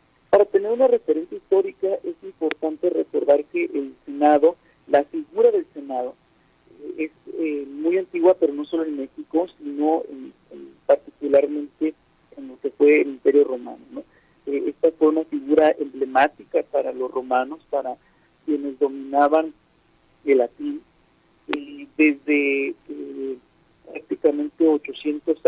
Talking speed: 120 wpm